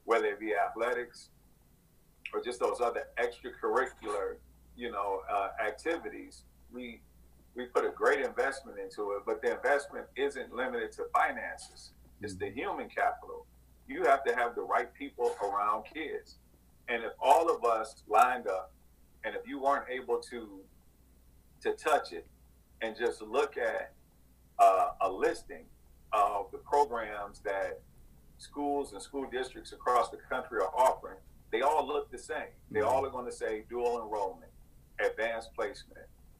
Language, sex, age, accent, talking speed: English, male, 40-59, American, 150 wpm